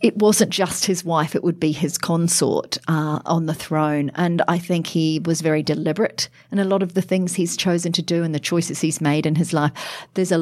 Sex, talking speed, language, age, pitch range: female, 235 wpm, English, 40-59, 150-180 Hz